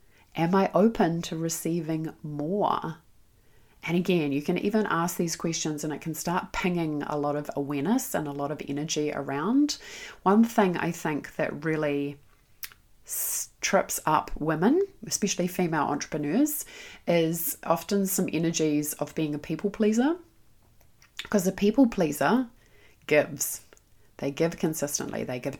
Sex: female